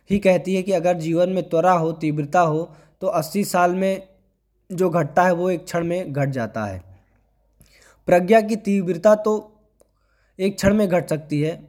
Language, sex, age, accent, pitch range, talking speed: Hindi, male, 20-39, native, 150-185 Hz, 180 wpm